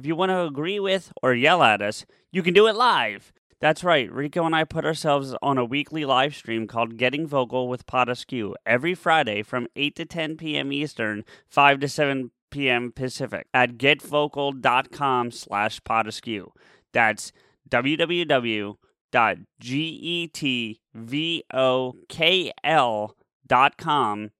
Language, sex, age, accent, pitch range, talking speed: English, male, 30-49, American, 125-155 Hz, 125 wpm